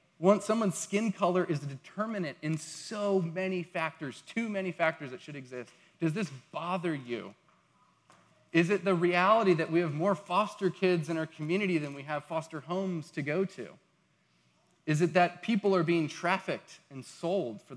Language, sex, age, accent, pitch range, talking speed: English, male, 30-49, American, 150-190 Hz, 175 wpm